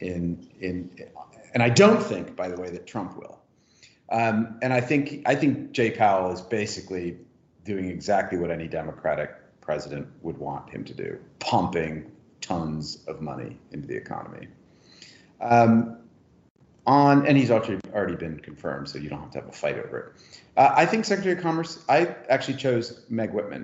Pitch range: 90-125 Hz